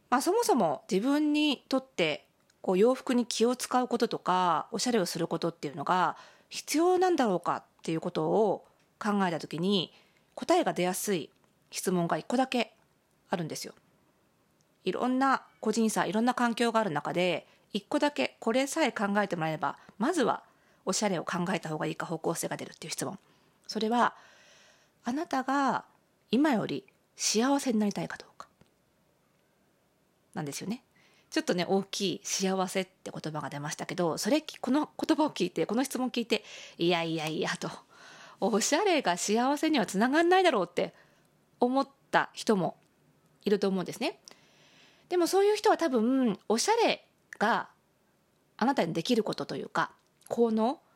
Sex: female